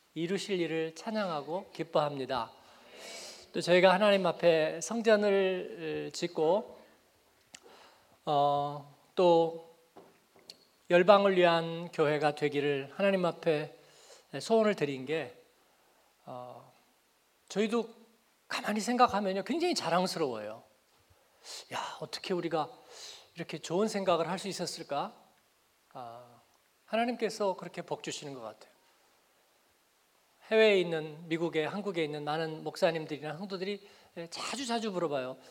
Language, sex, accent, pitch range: Korean, male, native, 150-200 Hz